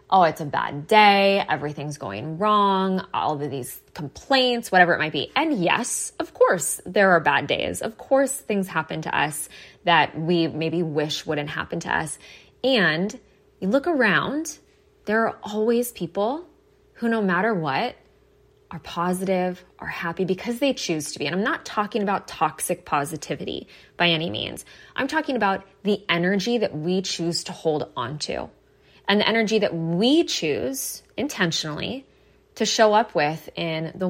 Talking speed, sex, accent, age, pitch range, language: 165 wpm, female, American, 20-39, 165-215 Hz, English